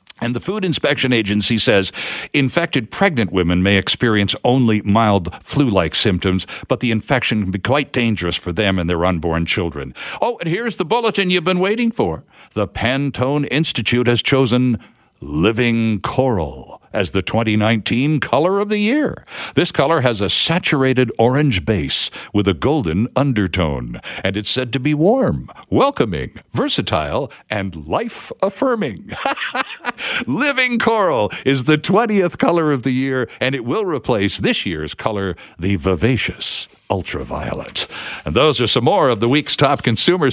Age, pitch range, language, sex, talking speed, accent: 60-79, 105-150 Hz, English, male, 150 wpm, American